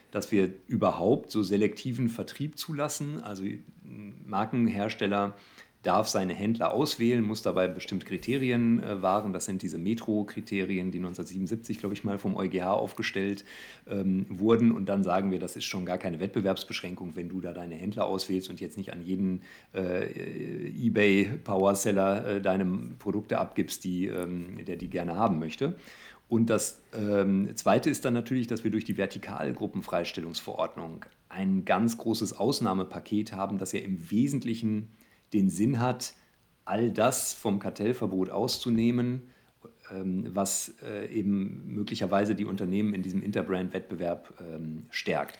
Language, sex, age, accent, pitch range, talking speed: German, male, 50-69, German, 95-115 Hz, 145 wpm